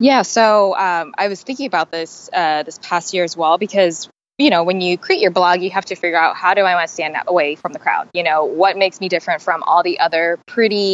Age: 20-39